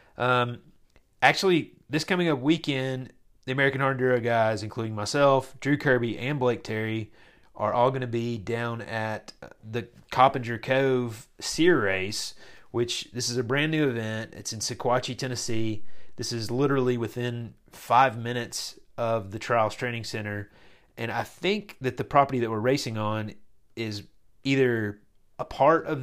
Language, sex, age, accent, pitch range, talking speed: English, male, 30-49, American, 110-130 Hz, 150 wpm